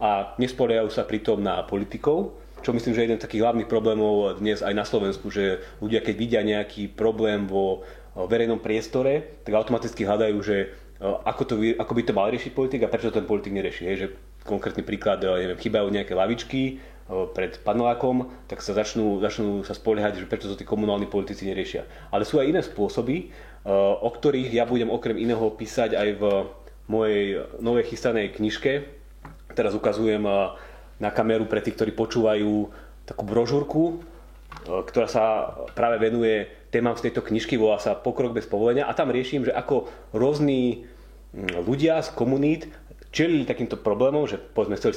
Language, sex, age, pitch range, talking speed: Slovak, male, 30-49, 105-120 Hz, 165 wpm